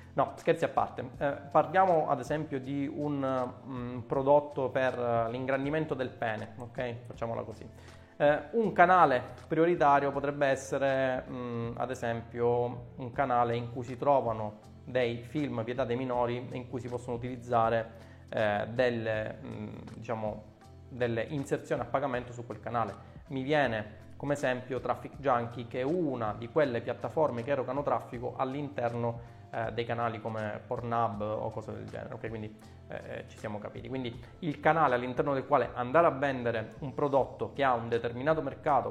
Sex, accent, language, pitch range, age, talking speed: male, native, Italian, 115-140 Hz, 20-39, 155 wpm